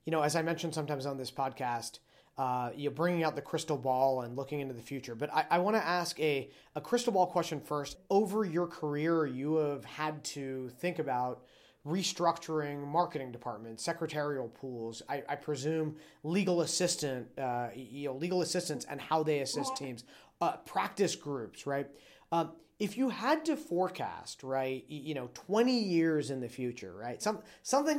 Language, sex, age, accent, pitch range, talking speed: English, male, 30-49, American, 140-180 Hz, 180 wpm